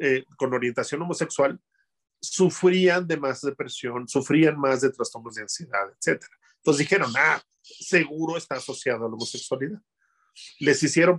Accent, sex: Mexican, male